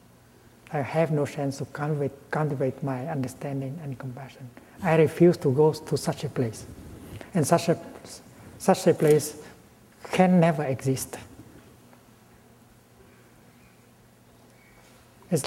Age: 60-79